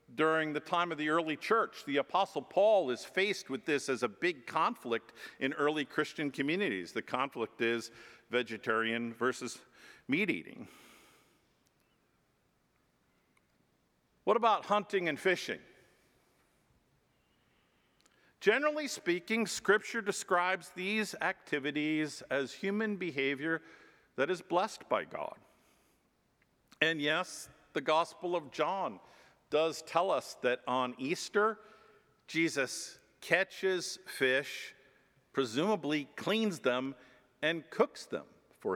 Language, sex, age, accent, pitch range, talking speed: English, male, 50-69, American, 140-195 Hz, 105 wpm